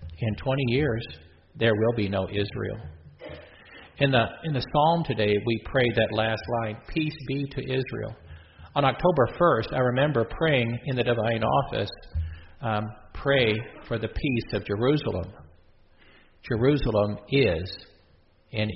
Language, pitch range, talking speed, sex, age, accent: English, 100-130 Hz, 140 wpm, male, 50-69, American